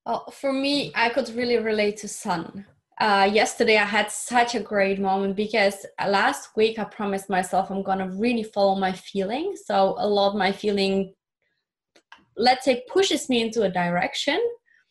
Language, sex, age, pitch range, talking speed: English, female, 20-39, 190-220 Hz, 175 wpm